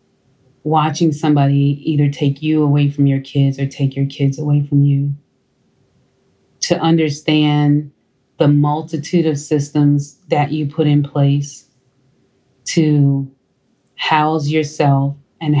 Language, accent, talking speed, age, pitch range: English, American, 120 wpm, 30-49, 140-155 Hz